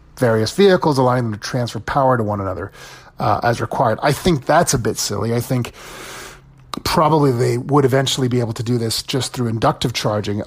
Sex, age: male, 30-49